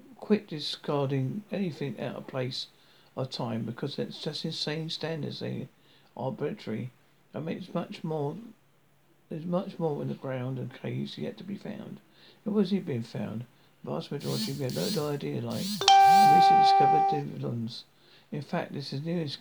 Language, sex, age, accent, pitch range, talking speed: English, male, 60-79, British, 140-195 Hz, 165 wpm